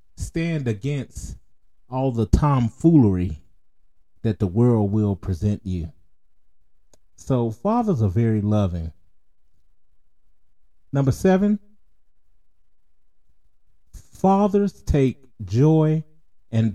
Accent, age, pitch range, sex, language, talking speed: American, 30-49, 90-125 Hz, male, English, 80 wpm